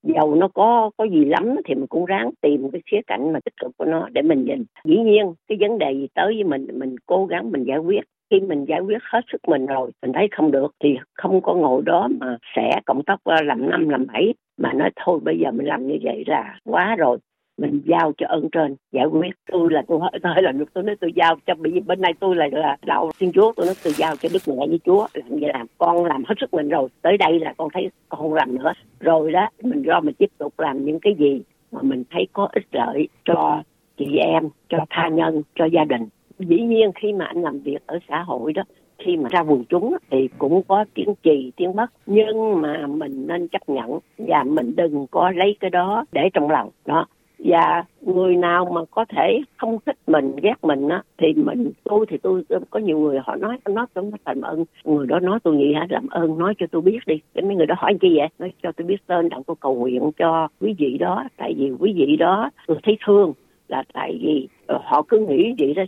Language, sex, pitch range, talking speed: Vietnamese, female, 155-210 Hz, 245 wpm